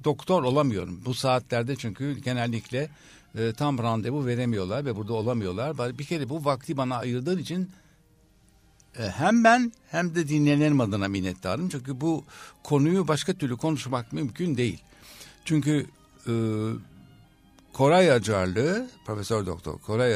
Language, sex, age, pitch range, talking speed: Turkish, male, 60-79, 110-150 Hz, 130 wpm